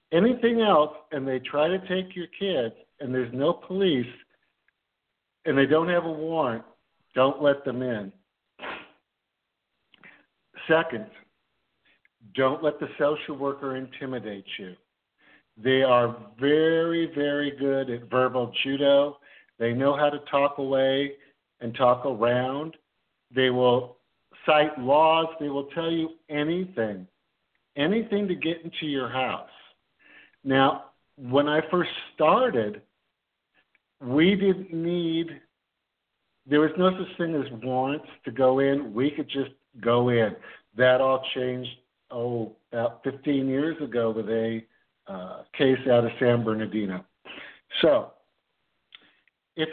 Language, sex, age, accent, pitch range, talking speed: English, male, 50-69, American, 125-155 Hz, 125 wpm